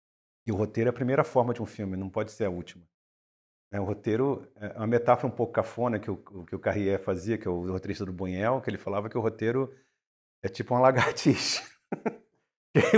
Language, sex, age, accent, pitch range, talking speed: Portuguese, male, 50-69, Brazilian, 100-140 Hz, 215 wpm